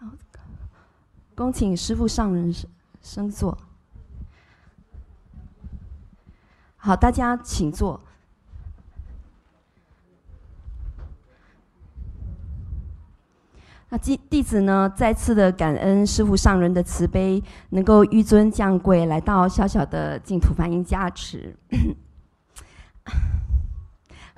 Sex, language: female, Chinese